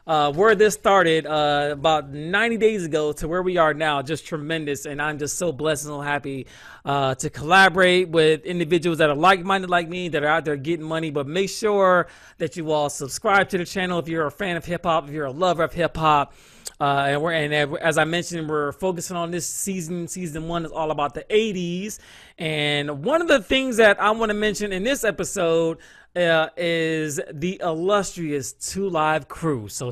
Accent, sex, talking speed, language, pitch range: American, male, 205 wpm, English, 155-195 Hz